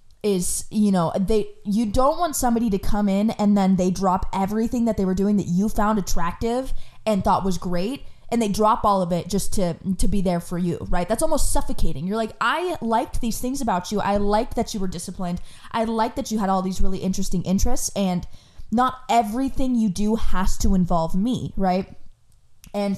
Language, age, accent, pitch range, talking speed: English, 20-39, American, 185-230 Hz, 210 wpm